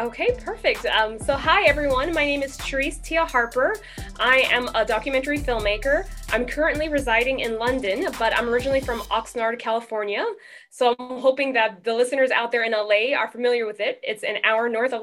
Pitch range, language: 215-265 Hz, English